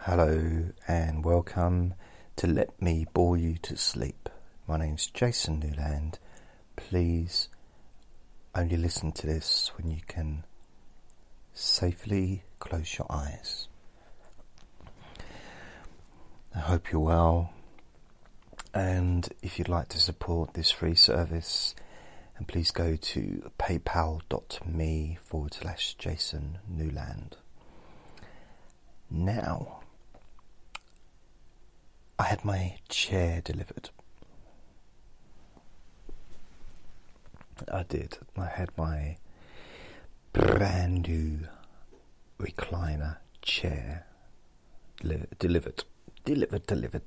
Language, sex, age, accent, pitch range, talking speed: English, male, 40-59, British, 80-90 Hz, 85 wpm